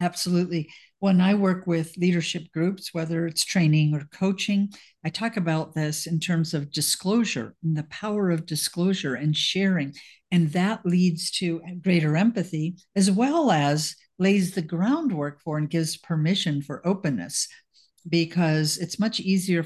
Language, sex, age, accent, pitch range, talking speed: English, female, 50-69, American, 155-190 Hz, 150 wpm